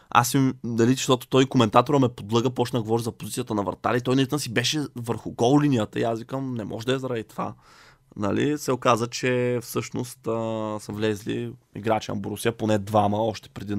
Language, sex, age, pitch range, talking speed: Bulgarian, male, 20-39, 110-130 Hz, 180 wpm